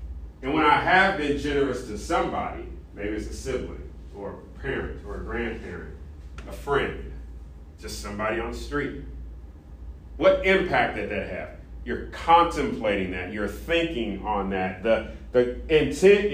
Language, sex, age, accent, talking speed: English, male, 40-59, American, 145 wpm